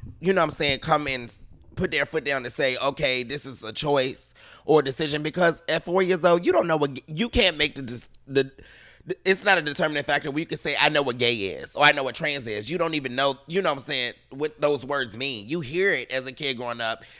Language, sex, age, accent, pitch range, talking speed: English, male, 30-49, American, 130-170 Hz, 265 wpm